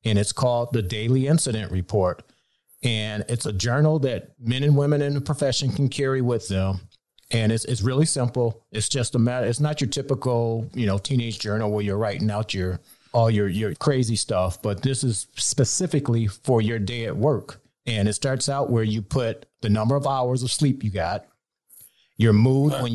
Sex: male